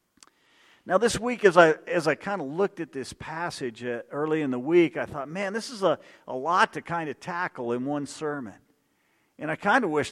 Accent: American